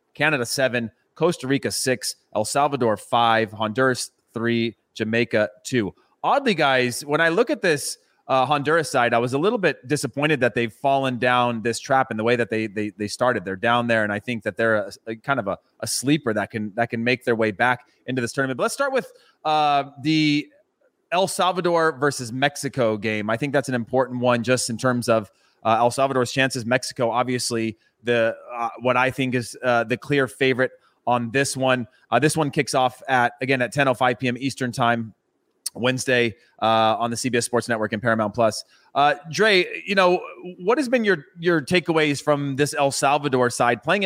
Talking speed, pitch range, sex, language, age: 200 wpm, 120-150 Hz, male, English, 30-49